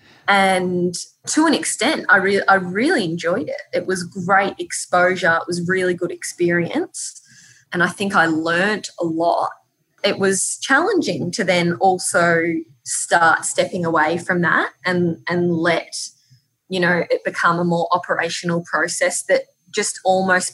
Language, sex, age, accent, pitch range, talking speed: English, female, 20-39, Australian, 170-225 Hz, 150 wpm